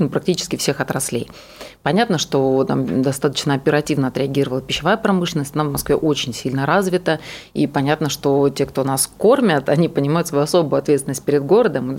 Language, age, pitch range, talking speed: Russian, 30-49, 140-175 Hz, 155 wpm